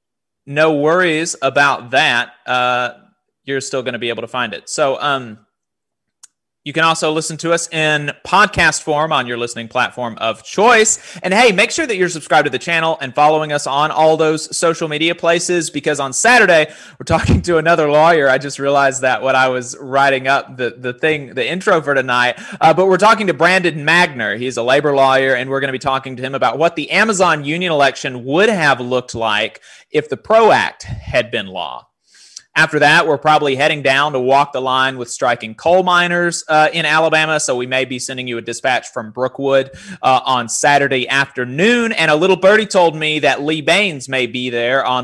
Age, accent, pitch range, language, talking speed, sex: 30-49, American, 130-165 Hz, English, 200 wpm, male